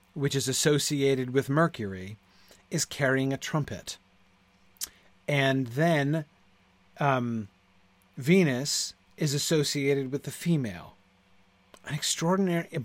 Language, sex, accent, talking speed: English, male, American, 95 wpm